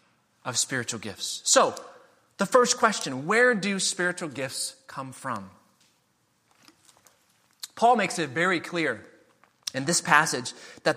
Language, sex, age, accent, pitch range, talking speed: English, male, 30-49, American, 150-210 Hz, 120 wpm